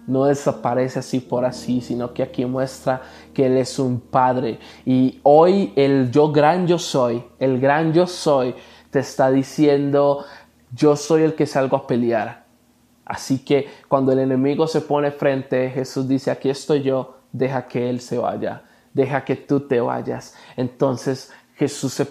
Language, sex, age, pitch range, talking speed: Spanish, male, 20-39, 130-165 Hz, 165 wpm